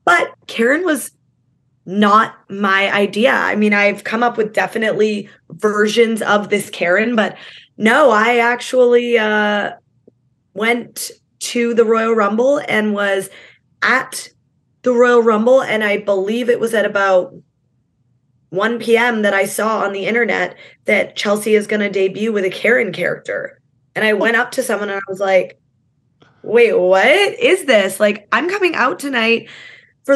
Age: 20-39